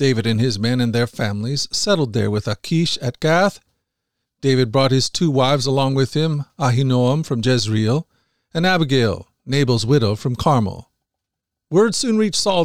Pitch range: 125-165 Hz